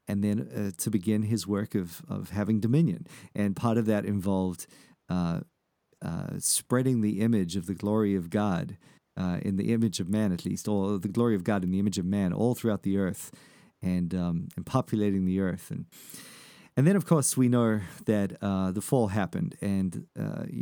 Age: 40-59